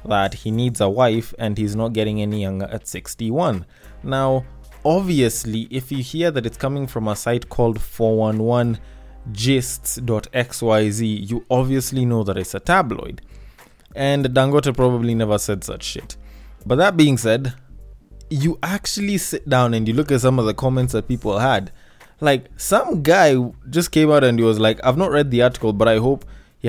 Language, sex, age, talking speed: English, male, 20-39, 175 wpm